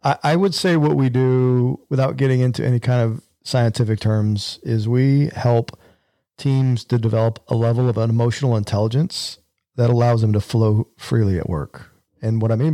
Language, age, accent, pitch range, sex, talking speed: English, 40-59, American, 110-130 Hz, male, 180 wpm